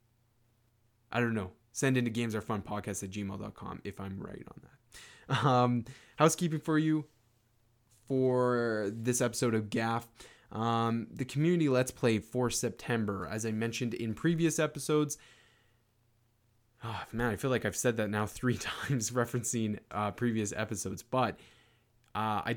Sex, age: male, 20-39